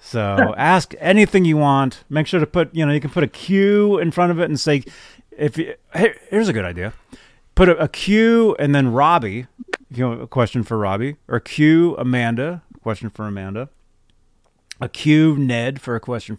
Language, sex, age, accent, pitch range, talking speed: English, male, 30-49, American, 115-175 Hz, 200 wpm